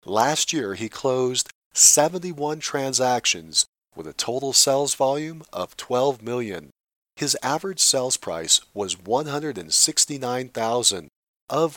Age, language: 40-59, English